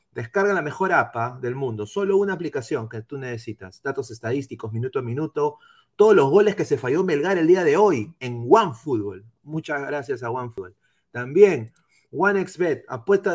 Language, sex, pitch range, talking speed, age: Spanish, male, 140-200 Hz, 165 wpm, 30-49